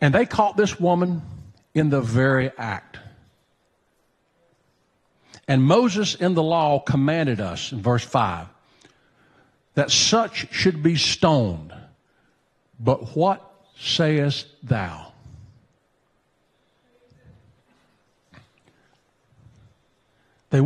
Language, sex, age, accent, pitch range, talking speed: English, male, 50-69, American, 130-185 Hz, 85 wpm